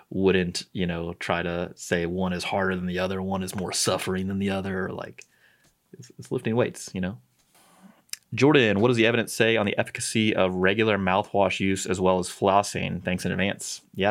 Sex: male